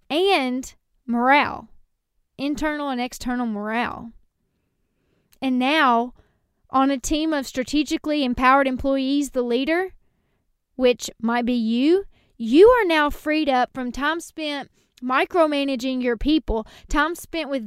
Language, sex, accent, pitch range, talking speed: English, female, American, 255-330 Hz, 120 wpm